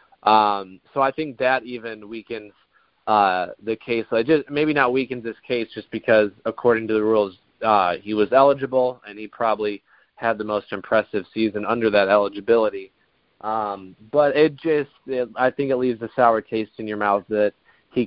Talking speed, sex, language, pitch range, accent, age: 185 wpm, male, English, 100-120 Hz, American, 20-39